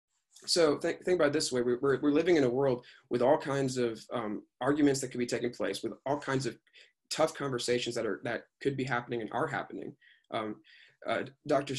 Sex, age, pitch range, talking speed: male, 20-39, 120-150 Hz, 205 wpm